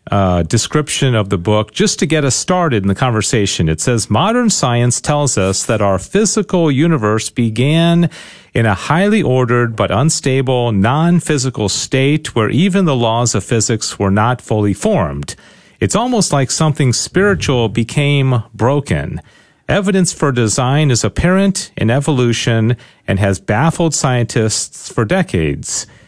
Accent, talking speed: American, 145 wpm